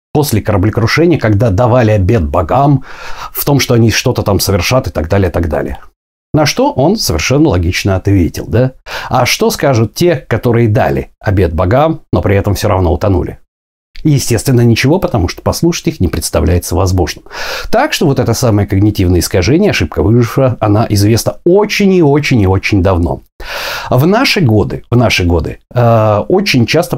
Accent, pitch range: native, 95-135 Hz